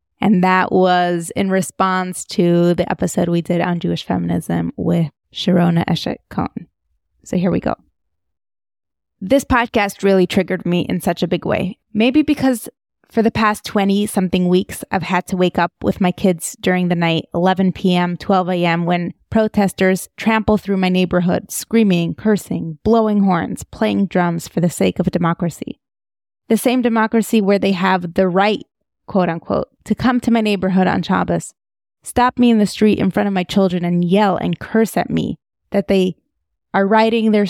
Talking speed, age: 175 wpm, 20-39